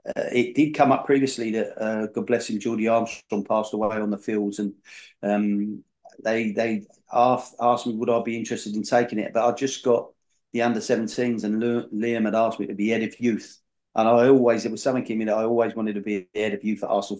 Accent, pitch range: British, 110-120 Hz